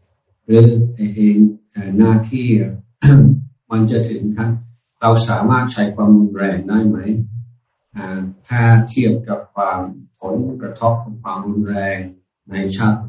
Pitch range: 95-110 Hz